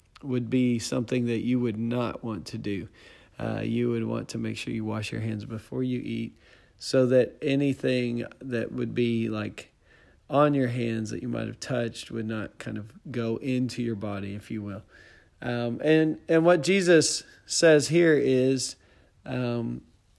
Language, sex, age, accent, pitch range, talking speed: English, male, 40-59, American, 110-130 Hz, 175 wpm